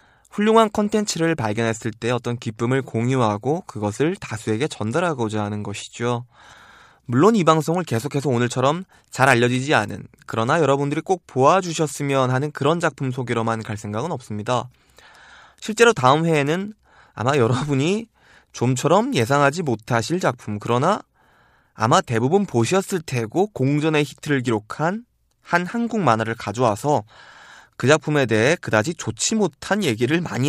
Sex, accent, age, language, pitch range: male, native, 20-39, Korean, 115-165 Hz